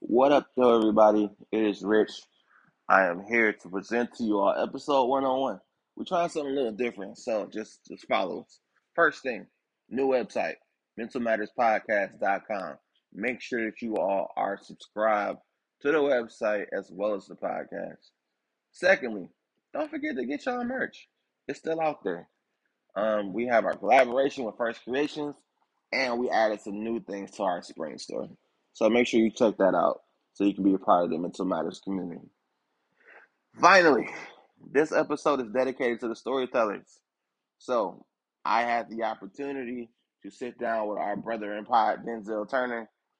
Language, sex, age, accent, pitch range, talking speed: English, male, 20-39, American, 105-135 Hz, 165 wpm